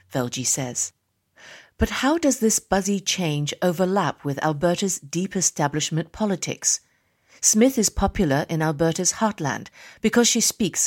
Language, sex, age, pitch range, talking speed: English, female, 40-59, 155-195 Hz, 125 wpm